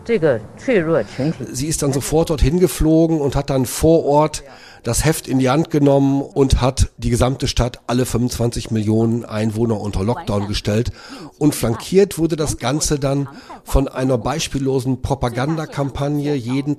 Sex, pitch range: male, 115-155 Hz